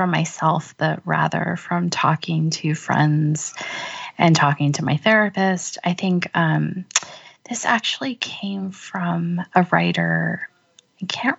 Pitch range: 160-215 Hz